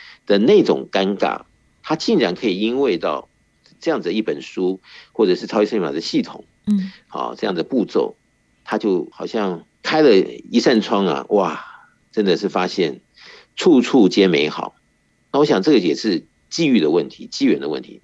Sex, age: male, 50-69